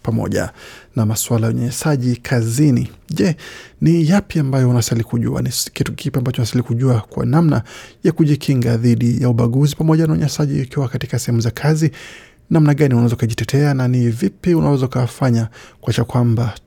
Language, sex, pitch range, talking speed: Swahili, male, 120-145 Hz, 160 wpm